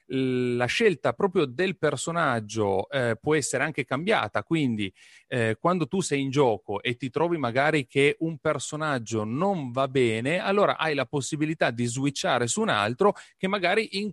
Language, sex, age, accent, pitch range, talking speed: Italian, male, 30-49, native, 110-150 Hz, 165 wpm